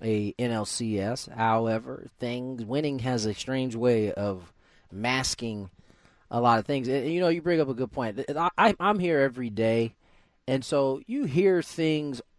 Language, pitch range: English, 110-145 Hz